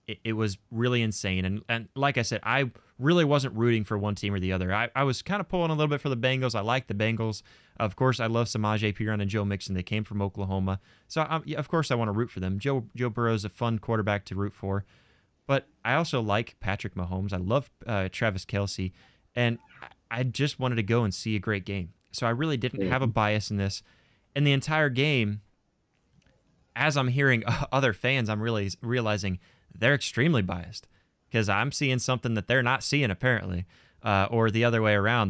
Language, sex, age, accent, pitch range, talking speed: English, male, 20-39, American, 100-125 Hz, 220 wpm